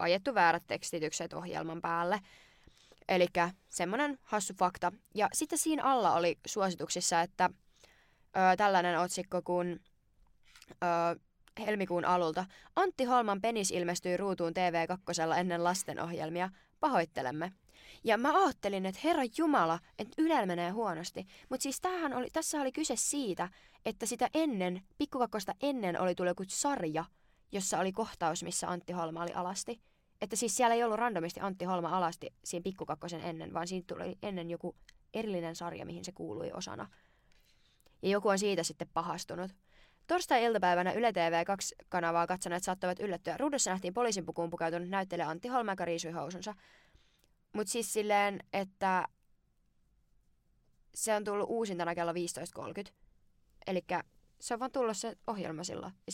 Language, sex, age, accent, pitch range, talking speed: Finnish, female, 20-39, native, 175-230 Hz, 135 wpm